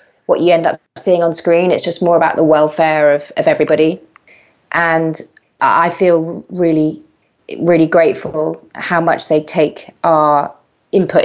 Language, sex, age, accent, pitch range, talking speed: English, female, 30-49, British, 160-185 Hz, 150 wpm